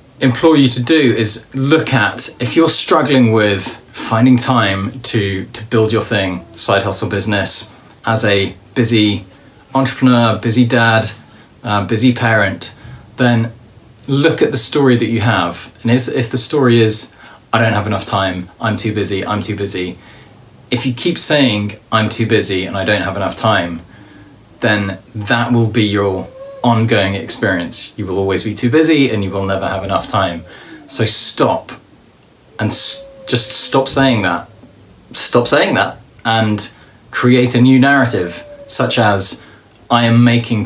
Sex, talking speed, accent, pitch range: male, 160 wpm, British, 100-125 Hz